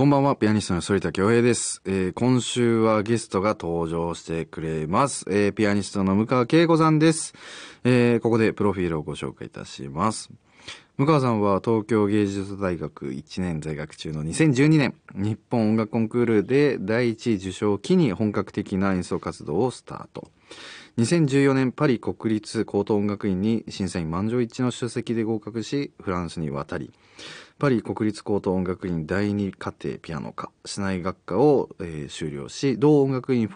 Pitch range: 90-125 Hz